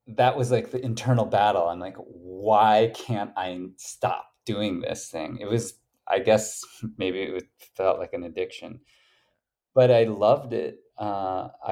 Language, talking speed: English, 155 wpm